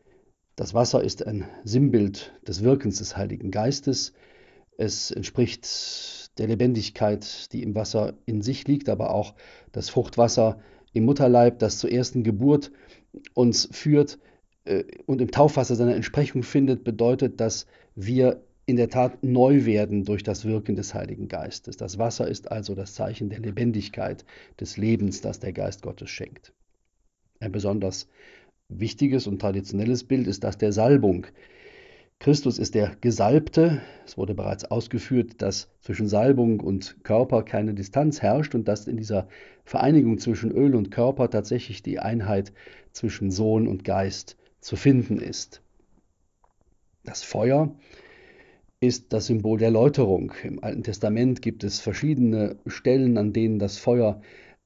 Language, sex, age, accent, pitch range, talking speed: German, male, 40-59, German, 105-125 Hz, 140 wpm